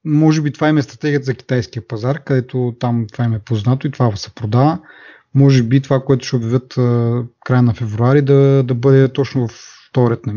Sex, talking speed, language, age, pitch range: male, 205 wpm, Bulgarian, 30-49, 115-140 Hz